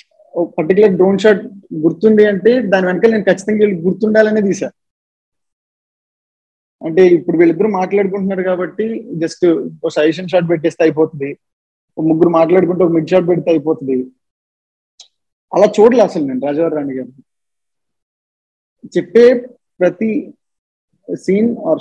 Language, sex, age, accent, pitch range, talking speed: Telugu, male, 20-39, native, 170-220 Hz, 115 wpm